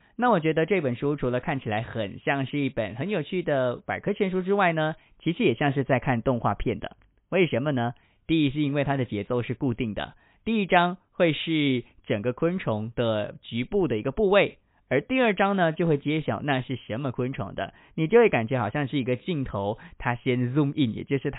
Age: 20-39